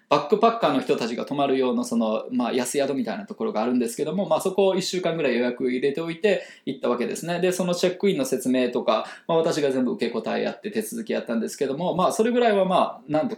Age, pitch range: 20-39, 130-210 Hz